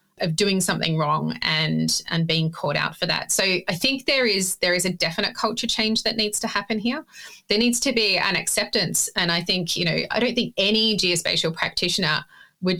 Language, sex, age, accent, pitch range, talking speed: English, female, 30-49, Australian, 170-210 Hz, 210 wpm